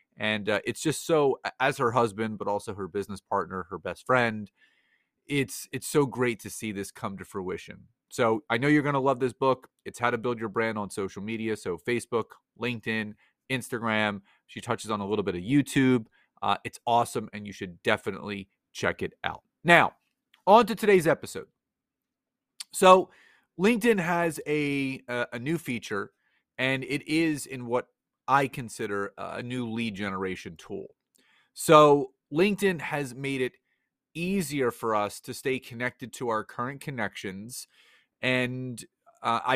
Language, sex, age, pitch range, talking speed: English, male, 30-49, 110-145 Hz, 165 wpm